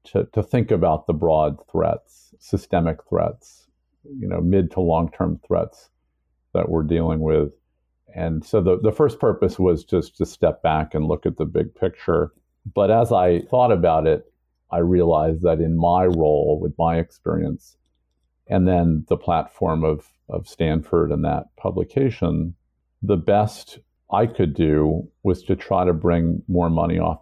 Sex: male